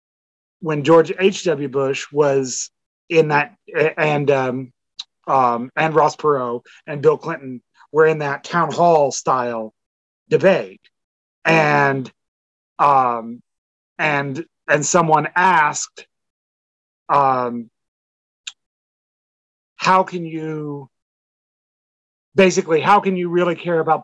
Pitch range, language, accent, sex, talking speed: 130-170 Hz, English, American, male, 100 wpm